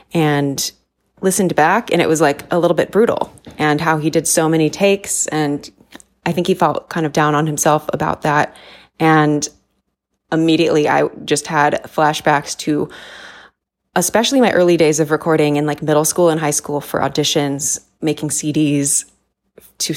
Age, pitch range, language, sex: 20-39, 155-185 Hz, English, female